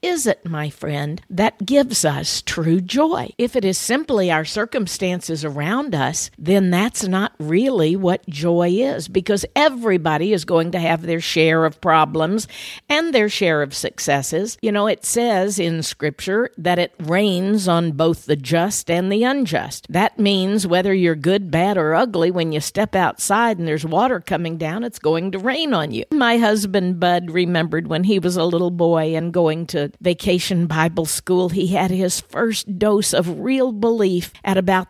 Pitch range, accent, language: 165-215 Hz, American, English